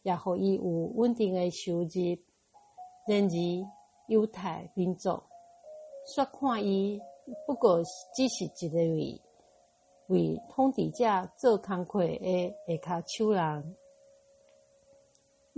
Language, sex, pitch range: Chinese, female, 175-255 Hz